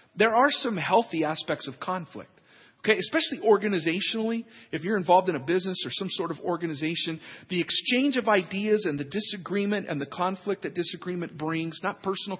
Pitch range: 170-225 Hz